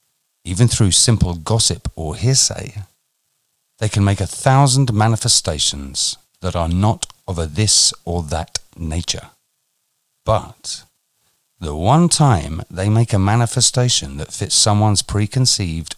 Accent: British